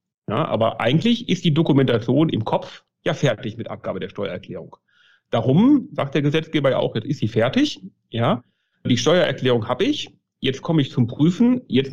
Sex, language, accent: male, German, German